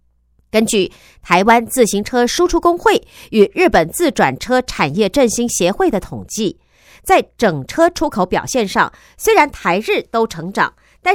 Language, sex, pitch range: Chinese, female, 195-290 Hz